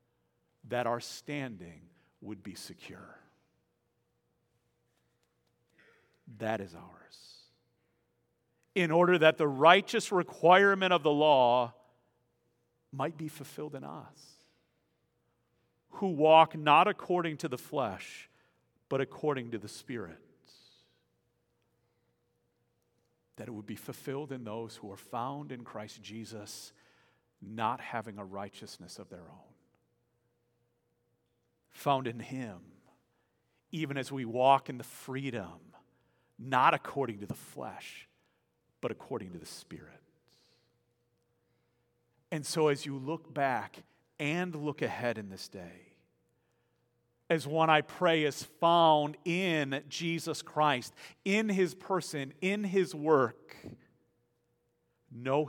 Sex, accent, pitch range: male, American, 110-155 Hz